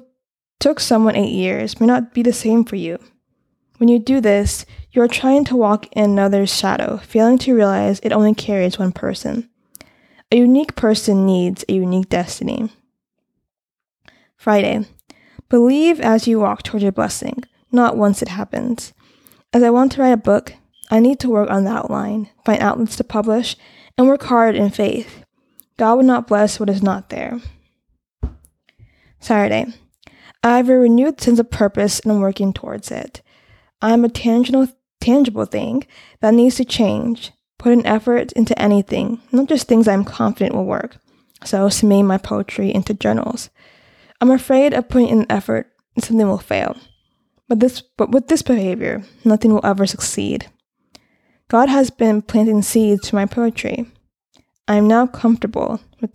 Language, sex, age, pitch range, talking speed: English, female, 10-29, 205-250 Hz, 165 wpm